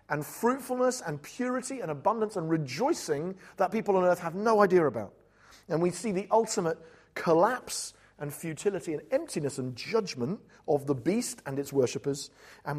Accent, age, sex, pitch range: British, 40-59, male, 145-230 Hz